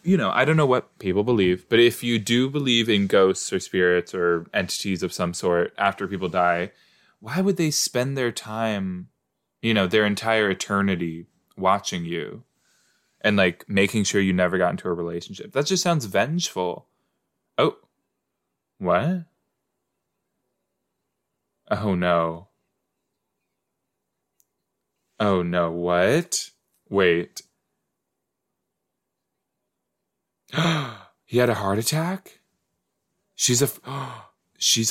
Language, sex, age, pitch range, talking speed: English, male, 20-39, 90-130 Hz, 120 wpm